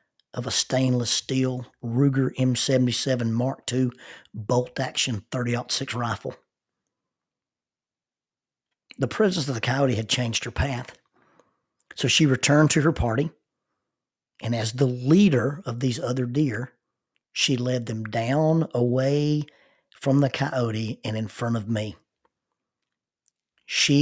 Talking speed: 120 wpm